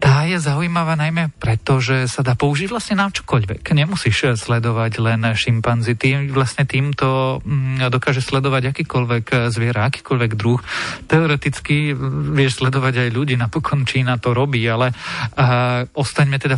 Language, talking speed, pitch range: Slovak, 130 wpm, 120-145 Hz